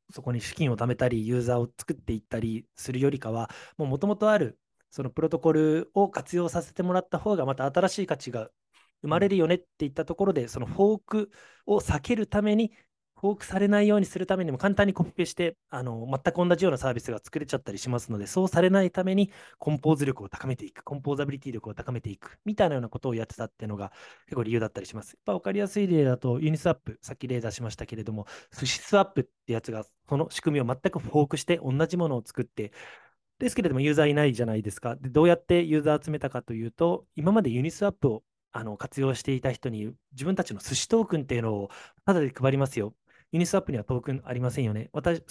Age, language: 20-39, Japanese